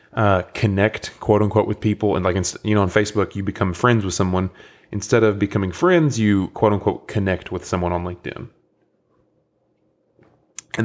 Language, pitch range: English, 90-105 Hz